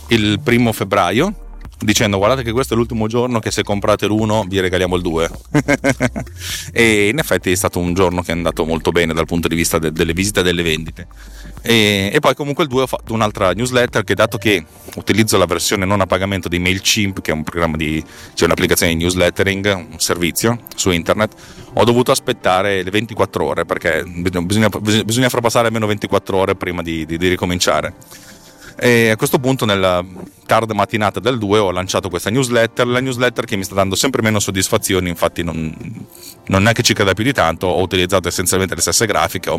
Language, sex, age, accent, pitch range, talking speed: Italian, male, 30-49, native, 90-115 Hz, 195 wpm